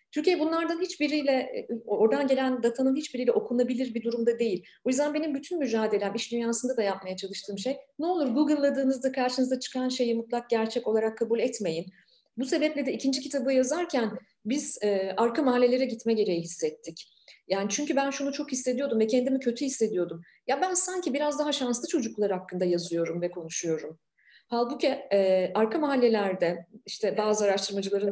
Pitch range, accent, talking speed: 190-265 Hz, native, 160 wpm